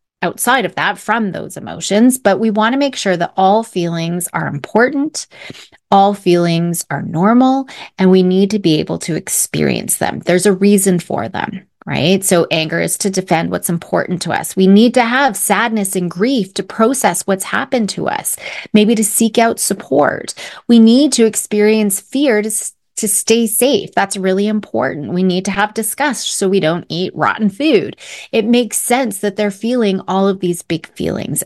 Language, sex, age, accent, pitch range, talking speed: English, female, 30-49, American, 180-230 Hz, 185 wpm